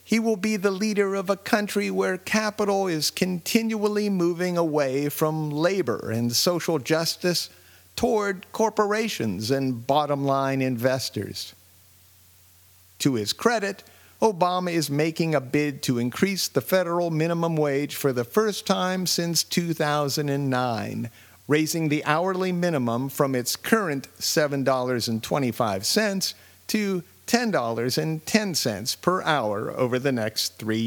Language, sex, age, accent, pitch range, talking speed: English, male, 50-69, American, 110-180 Hz, 115 wpm